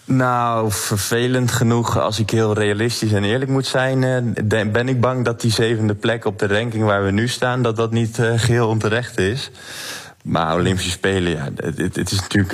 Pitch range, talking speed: 95-115 Hz, 180 wpm